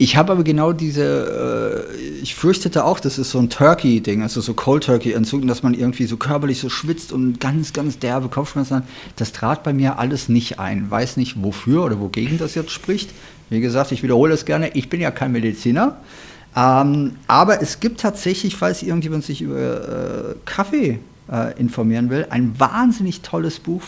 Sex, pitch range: male, 120-155 Hz